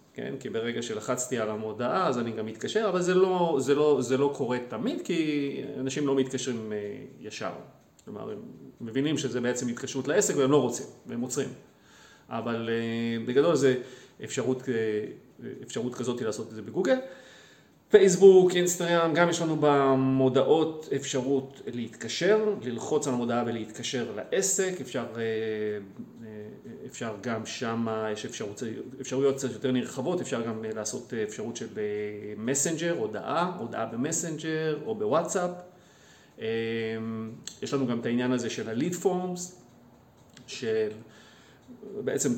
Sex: male